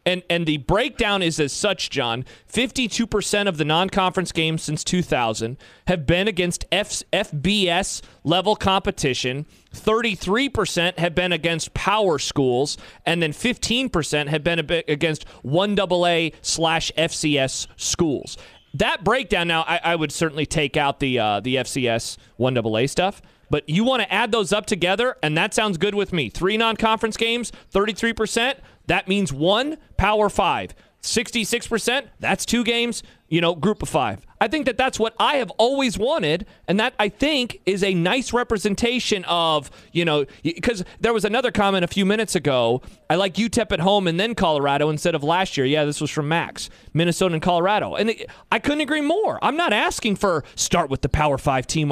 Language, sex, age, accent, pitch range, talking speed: English, male, 30-49, American, 155-215 Hz, 170 wpm